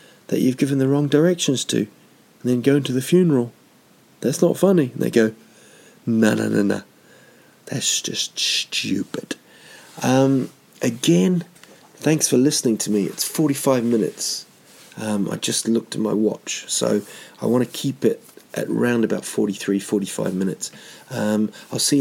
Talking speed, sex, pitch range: 160 wpm, male, 110-140 Hz